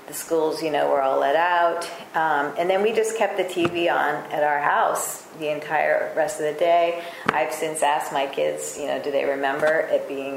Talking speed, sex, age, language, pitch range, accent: 220 wpm, female, 40-59, English, 145-190 Hz, American